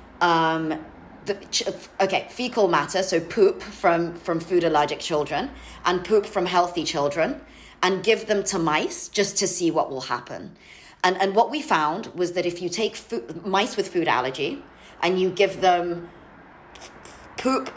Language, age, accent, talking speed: English, 30-49, British, 160 wpm